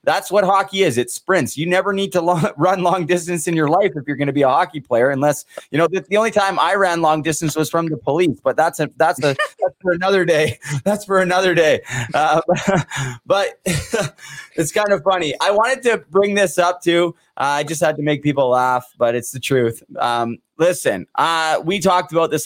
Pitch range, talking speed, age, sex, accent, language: 135-165 Hz, 230 wpm, 20-39, male, American, English